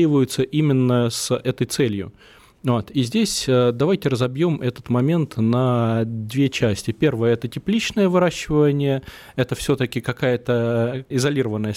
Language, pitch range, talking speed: Russian, 115-140 Hz, 110 wpm